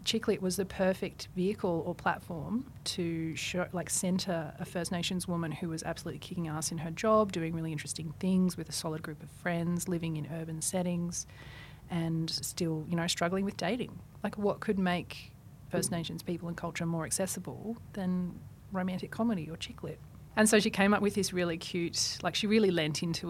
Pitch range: 155-185 Hz